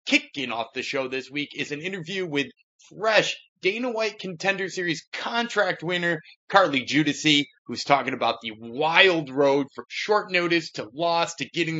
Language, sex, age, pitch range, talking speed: English, male, 20-39, 140-190 Hz, 165 wpm